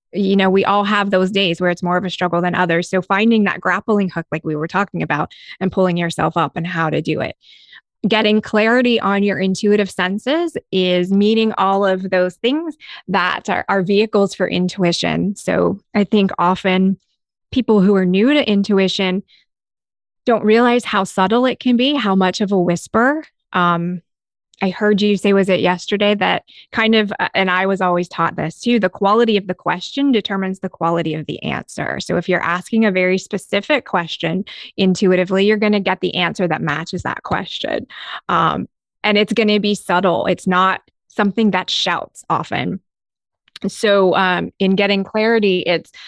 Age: 20-39